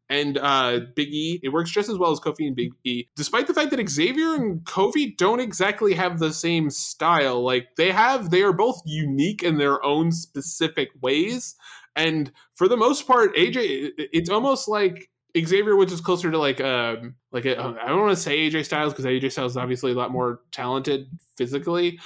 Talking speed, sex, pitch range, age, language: 205 wpm, male, 140-190 Hz, 20-39, English